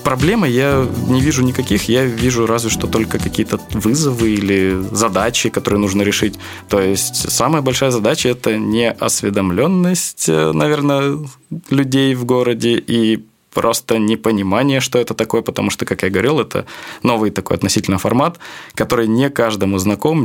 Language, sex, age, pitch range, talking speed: Russian, male, 20-39, 100-125 Hz, 140 wpm